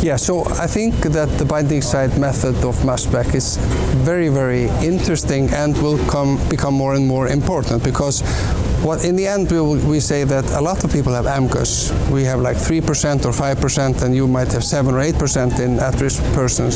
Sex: male